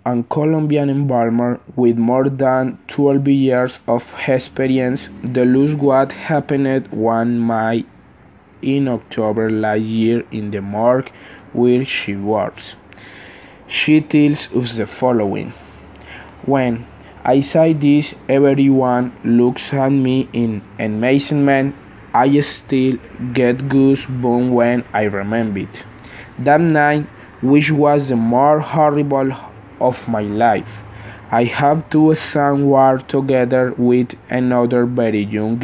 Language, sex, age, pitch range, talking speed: Spanish, male, 20-39, 115-140 Hz, 115 wpm